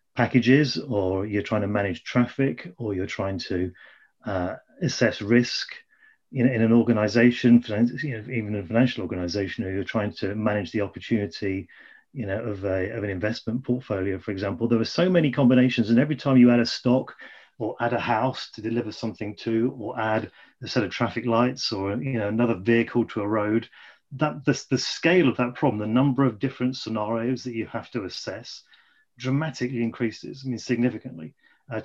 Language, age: English, 30-49